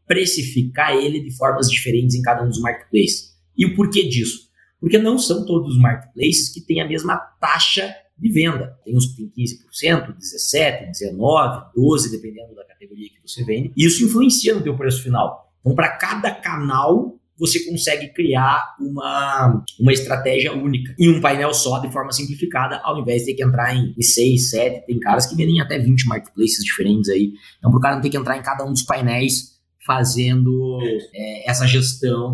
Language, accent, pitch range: Portuguese, Brazilian, 120-150 Hz